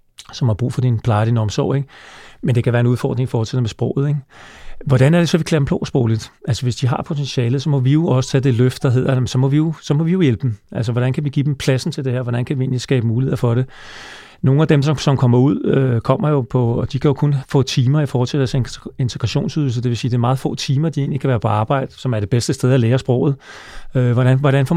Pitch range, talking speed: 120-140 Hz, 295 wpm